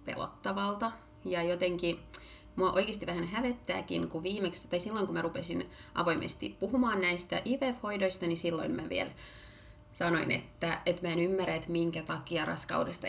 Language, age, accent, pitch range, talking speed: Finnish, 30-49, native, 170-225 Hz, 145 wpm